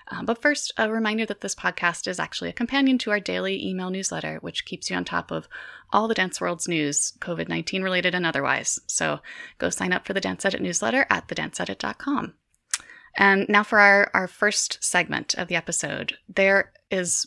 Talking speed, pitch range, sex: 190 wpm, 165-210 Hz, female